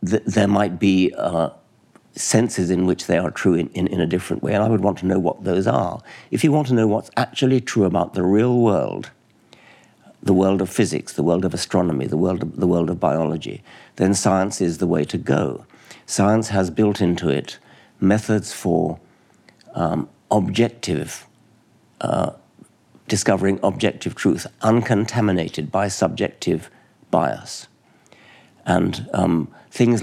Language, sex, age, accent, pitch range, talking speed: English, male, 60-79, British, 90-110 Hz, 160 wpm